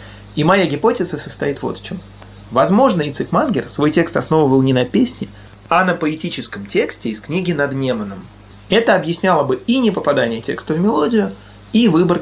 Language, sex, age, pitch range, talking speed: Russian, male, 20-39, 105-180 Hz, 170 wpm